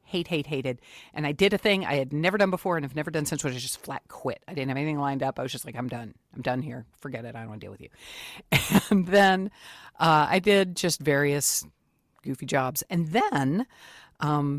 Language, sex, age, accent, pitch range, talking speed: English, female, 50-69, American, 140-185 Hz, 240 wpm